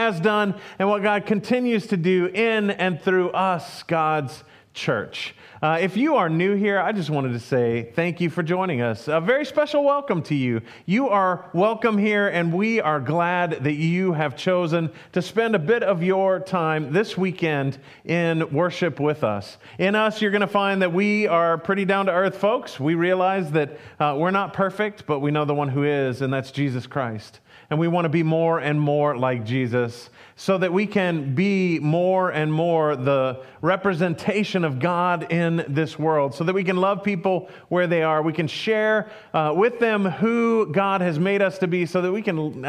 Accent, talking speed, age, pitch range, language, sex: American, 200 wpm, 40-59, 155-200 Hz, English, male